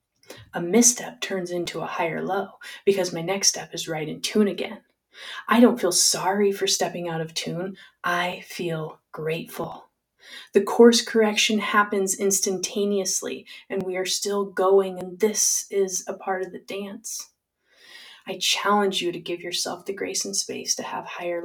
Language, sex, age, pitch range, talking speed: English, female, 20-39, 175-200 Hz, 165 wpm